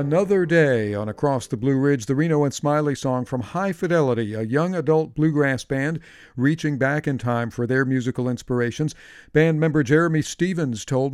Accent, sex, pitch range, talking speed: American, male, 115-150 Hz, 180 wpm